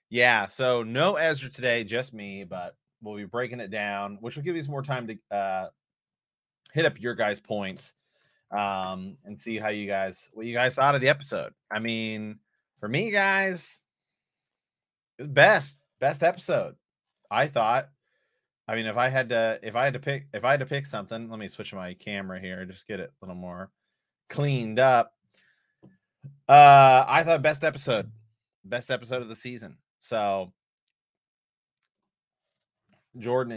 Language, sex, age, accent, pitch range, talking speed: English, male, 30-49, American, 100-135 Hz, 170 wpm